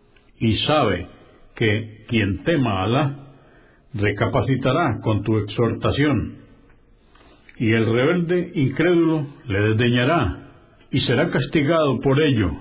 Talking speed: 105 wpm